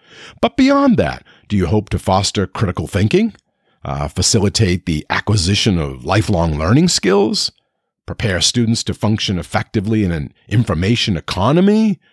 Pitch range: 95-140 Hz